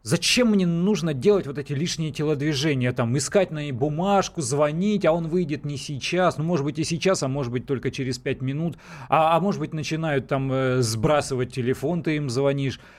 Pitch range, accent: 125-170 Hz, native